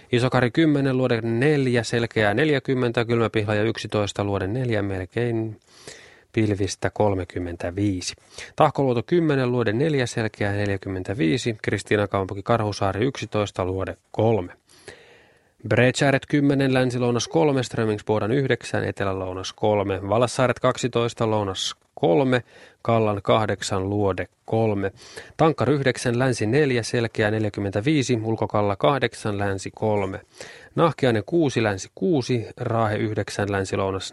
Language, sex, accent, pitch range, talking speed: Finnish, male, native, 100-125 Hz, 105 wpm